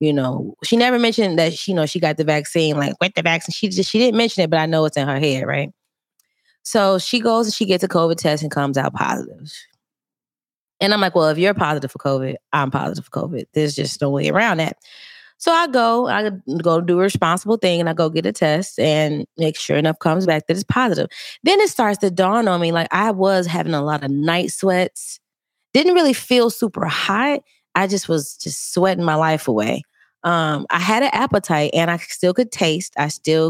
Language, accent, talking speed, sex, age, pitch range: English, American, 230 wpm, female, 20-39, 150-195 Hz